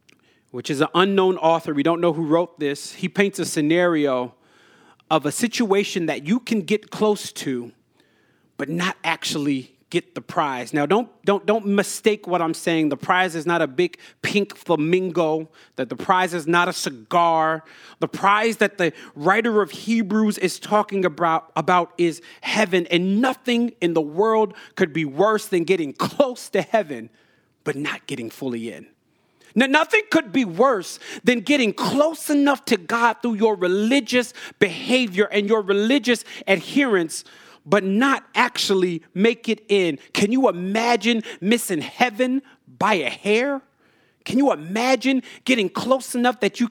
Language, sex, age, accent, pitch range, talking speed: English, male, 40-59, American, 165-225 Hz, 160 wpm